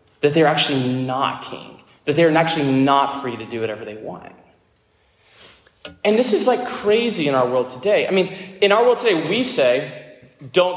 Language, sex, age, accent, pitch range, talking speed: English, male, 20-39, American, 125-180 Hz, 185 wpm